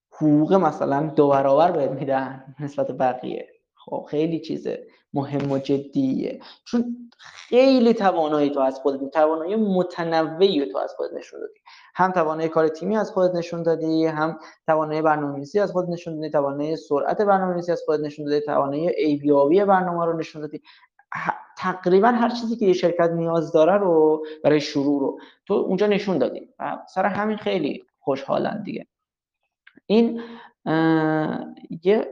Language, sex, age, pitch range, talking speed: Persian, male, 20-39, 150-200 Hz, 150 wpm